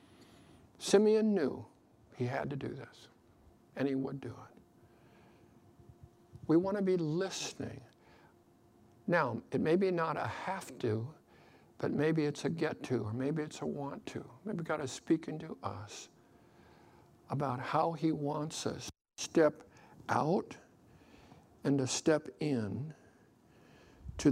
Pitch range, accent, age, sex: 125-175 Hz, American, 60-79, male